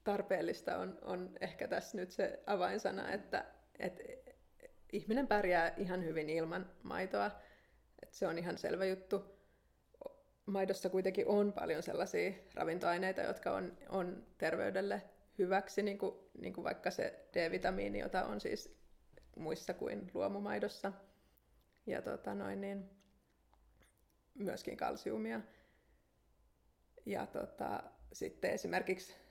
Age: 30-49